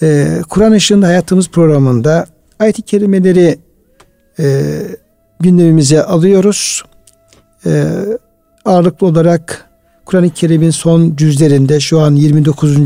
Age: 60-79